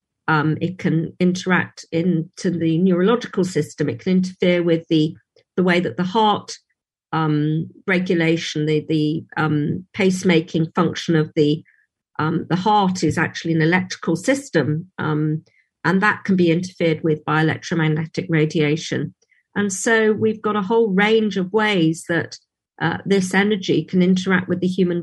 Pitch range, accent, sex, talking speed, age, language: 165-200 Hz, British, female, 150 wpm, 50-69, English